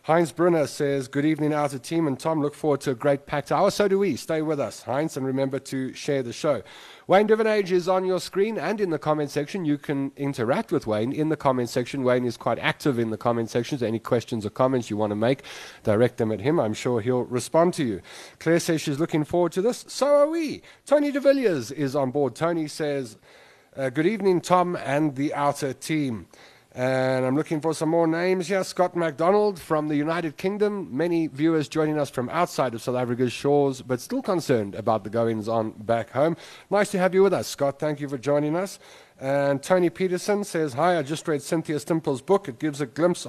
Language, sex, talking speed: English, male, 220 wpm